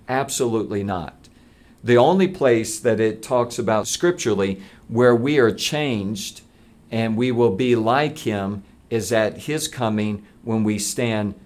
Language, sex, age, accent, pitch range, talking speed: English, male, 50-69, American, 110-130 Hz, 140 wpm